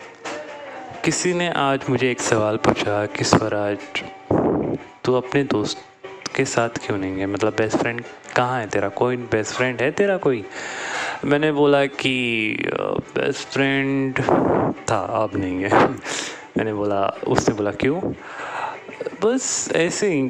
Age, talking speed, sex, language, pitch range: 20-39, 135 wpm, male, Hindi, 105-135 Hz